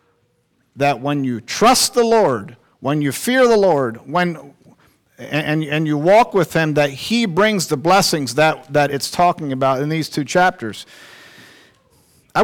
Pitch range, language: 150-200 Hz, English